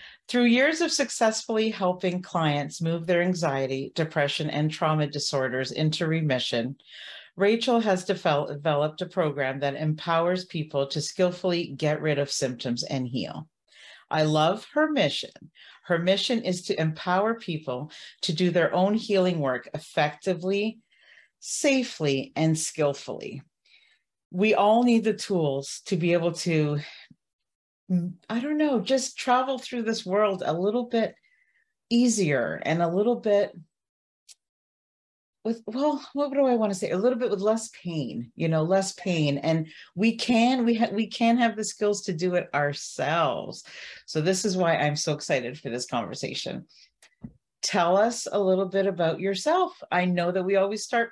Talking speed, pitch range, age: 155 wpm, 155-230 Hz, 40-59